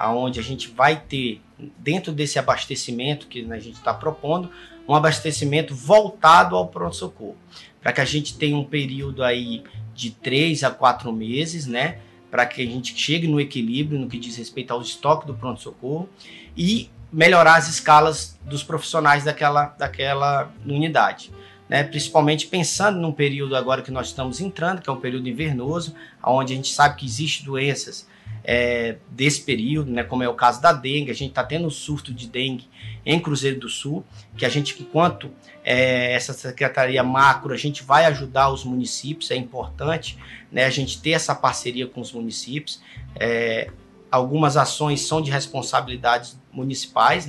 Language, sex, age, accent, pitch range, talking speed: Portuguese, male, 20-39, Brazilian, 125-155 Hz, 165 wpm